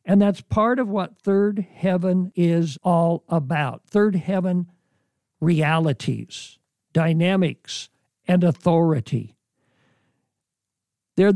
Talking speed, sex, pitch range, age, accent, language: 90 wpm, male, 145-190 Hz, 60-79, American, English